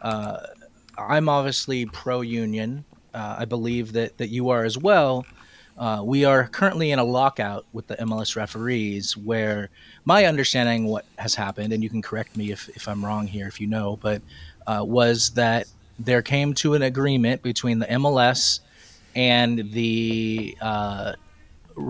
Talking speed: 165 wpm